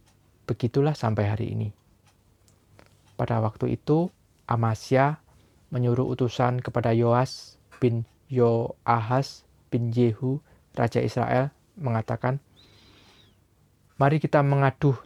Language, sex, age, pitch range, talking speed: Indonesian, male, 20-39, 110-130 Hz, 90 wpm